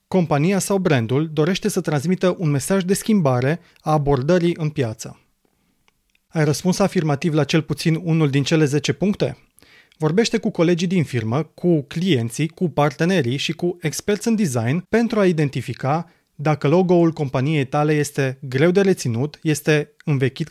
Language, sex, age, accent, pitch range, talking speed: Romanian, male, 30-49, native, 140-180 Hz, 150 wpm